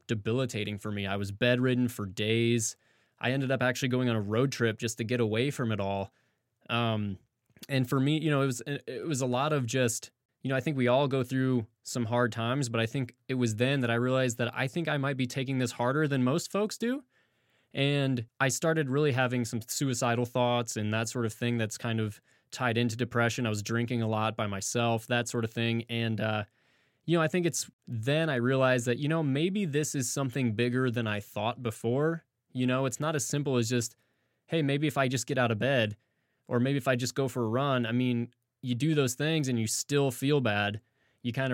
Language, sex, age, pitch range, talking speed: English, male, 20-39, 115-135 Hz, 235 wpm